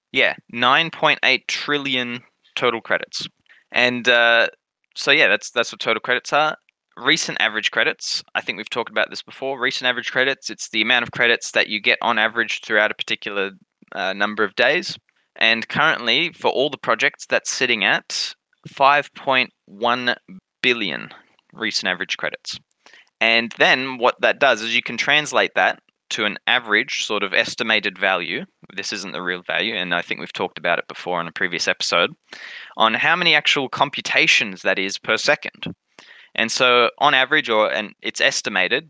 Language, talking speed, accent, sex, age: English, 170 wpm, Australian, male, 20-39